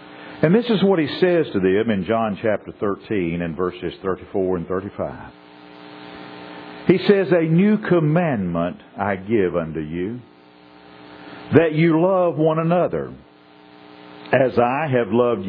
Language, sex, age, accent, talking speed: English, male, 50-69, American, 135 wpm